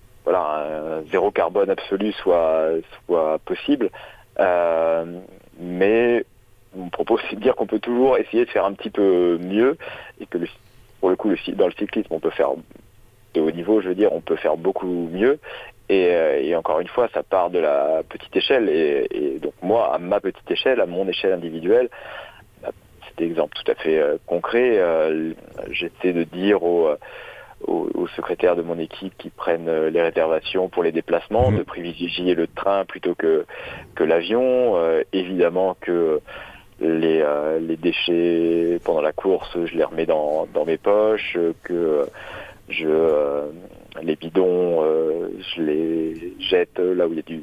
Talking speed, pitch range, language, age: 170 wpm, 80-125 Hz, French, 40-59